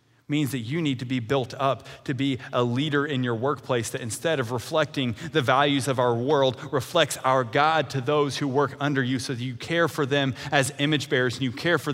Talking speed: 230 wpm